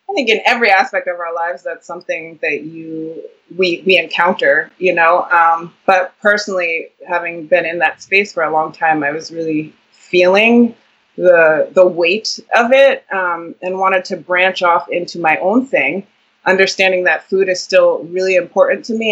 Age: 20-39